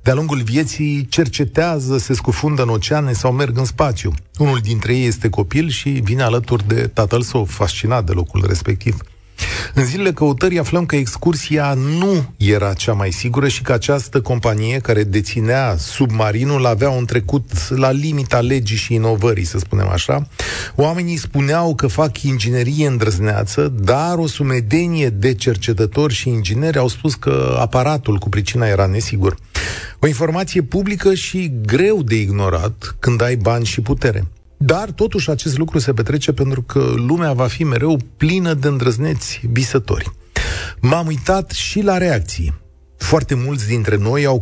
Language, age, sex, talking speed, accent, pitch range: Romanian, 40-59, male, 155 wpm, native, 110-150 Hz